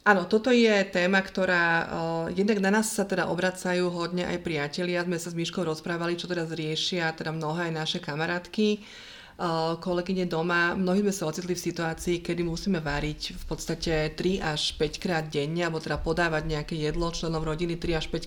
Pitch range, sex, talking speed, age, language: 170-195 Hz, female, 185 wpm, 30-49, Slovak